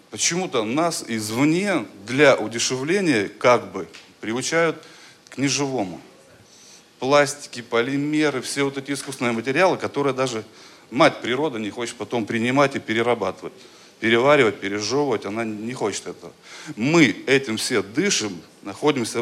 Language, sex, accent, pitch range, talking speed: Russian, male, native, 110-145 Hz, 120 wpm